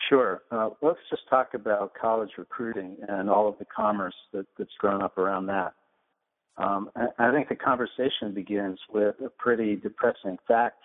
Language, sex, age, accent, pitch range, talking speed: English, male, 60-79, American, 100-120 Hz, 165 wpm